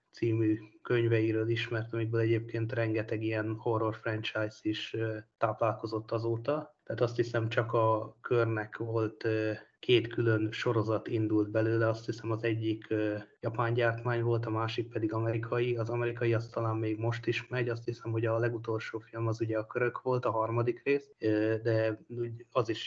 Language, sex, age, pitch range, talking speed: Hungarian, male, 20-39, 110-120 Hz, 155 wpm